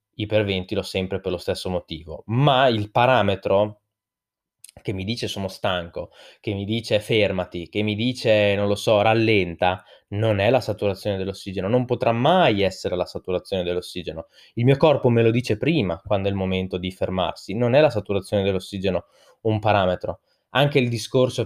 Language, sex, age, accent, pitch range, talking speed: Italian, male, 20-39, native, 100-115 Hz, 170 wpm